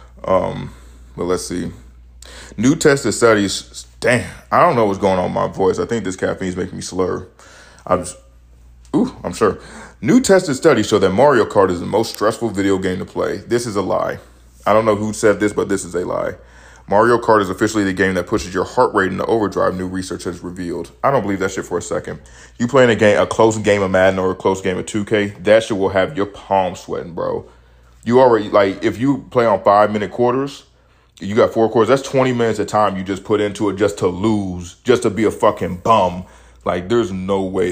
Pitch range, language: 90-110 Hz, English